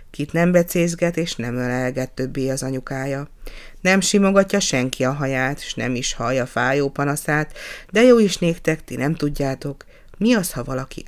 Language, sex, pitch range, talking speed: Hungarian, female, 135-195 Hz, 160 wpm